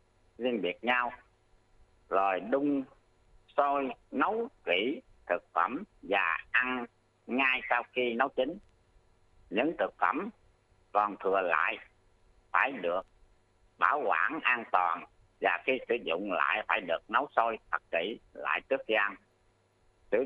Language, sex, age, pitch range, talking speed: Vietnamese, male, 50-69, 90-125 Hz, 135 wpm